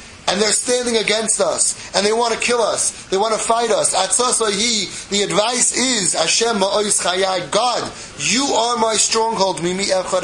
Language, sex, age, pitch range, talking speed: English, male, 30-49, 155-210 Hz, 150 wpm